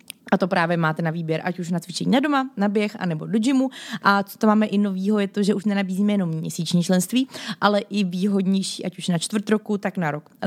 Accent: native